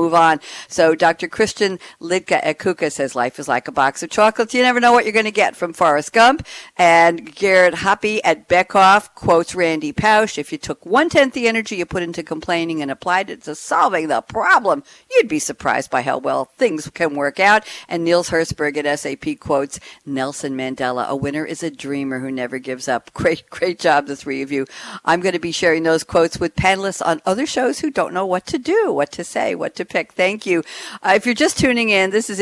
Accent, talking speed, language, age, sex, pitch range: American, 220 wpm, English, 60-79, female, 150-210 Hz